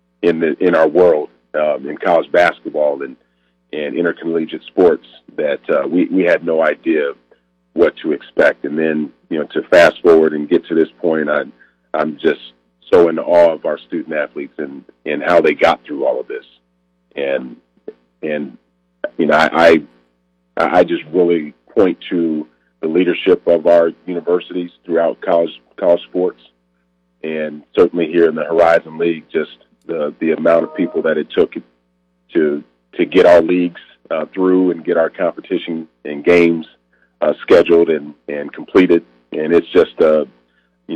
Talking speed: 170 wpm